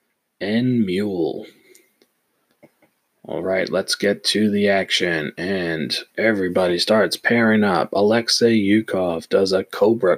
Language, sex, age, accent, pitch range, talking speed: English, male, 30-49, American, 105-125 Hz, 110 wpm